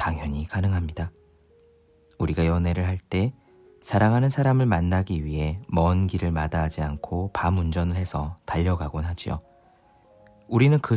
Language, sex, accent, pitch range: Korean, male, native, 80-105 Hz